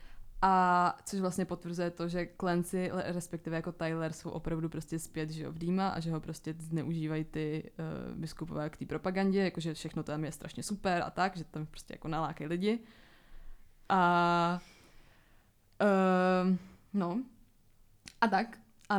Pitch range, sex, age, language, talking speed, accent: 165-185 Hz, female, 20-39, Czech, 150 wpm, native